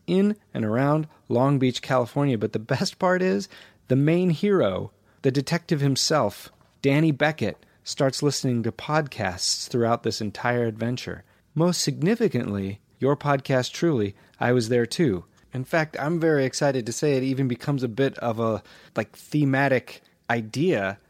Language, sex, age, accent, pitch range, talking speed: English, male, 30-49, American, 115-150 Hz, 150 wpm